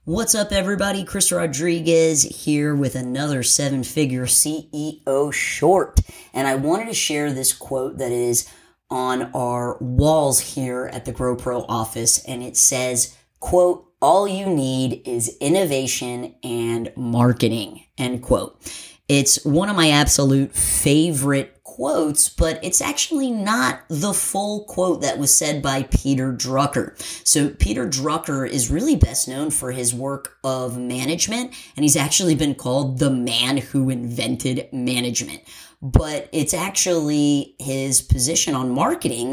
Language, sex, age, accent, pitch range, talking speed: English, female, 30-49, American, 125-155 Hz, 135 wpm